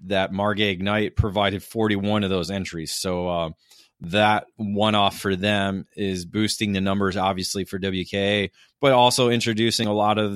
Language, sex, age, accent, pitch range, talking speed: English, male, 20-39, American, 95-110 Hz, 155 wpm